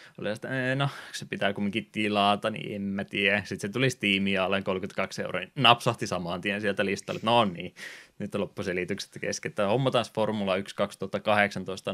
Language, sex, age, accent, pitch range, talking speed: Finnish, male, 20-39, native, 95-105 Hz, 175 wpm